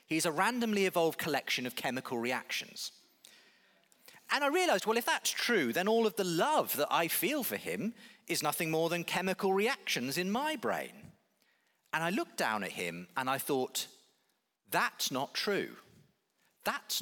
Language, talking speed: English, 165 wpm